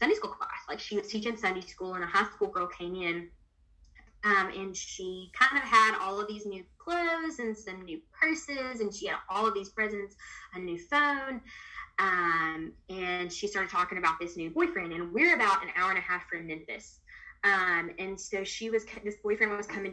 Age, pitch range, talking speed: 20-39, 185-230 Hz, 210 wpm